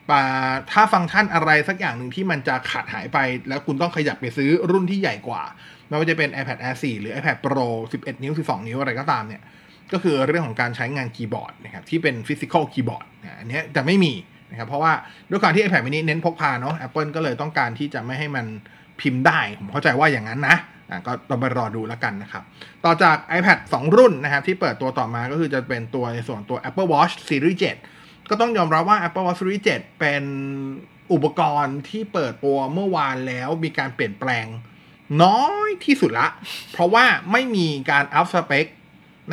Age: 20-39